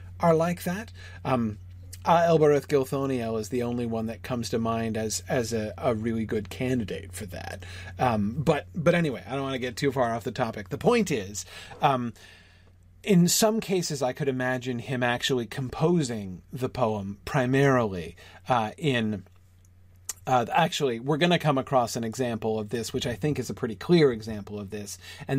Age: 40-59